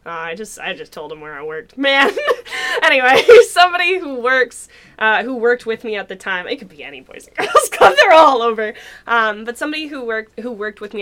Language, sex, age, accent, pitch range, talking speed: English, female, 10-29, American, 205-290 Hz, 235 wpm